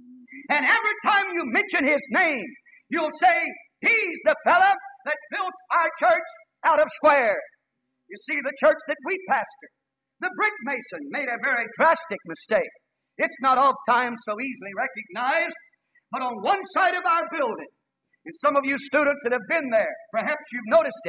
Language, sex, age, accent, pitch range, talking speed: English, male, 50-69, American, 270-335 Hz, 170 wpm